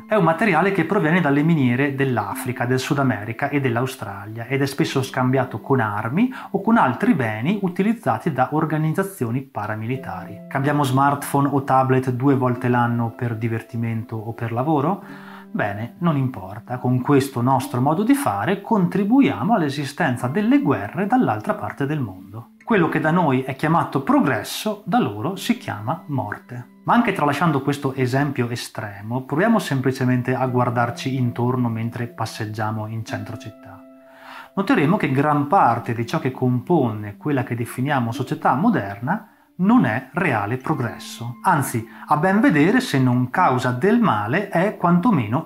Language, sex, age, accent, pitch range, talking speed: Italian, male, 30-49, native, 120-165 Hz, 150 wpm